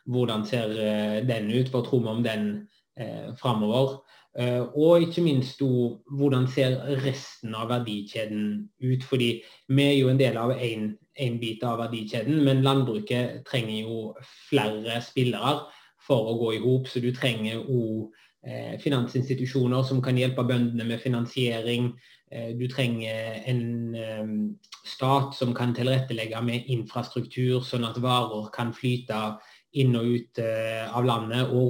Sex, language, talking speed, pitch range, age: male, English, 145 wpm, 115-135 Hz, 20-39